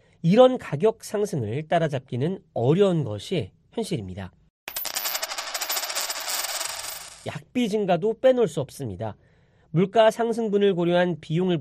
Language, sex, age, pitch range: Korean, male, 40-59, 140-215 Hz